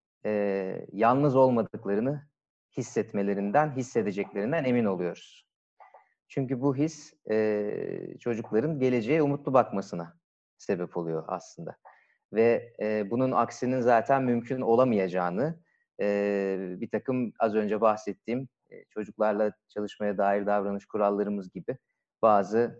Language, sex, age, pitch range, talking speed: Turkish, male, 30-49, 105-135 Hz, 105 wpm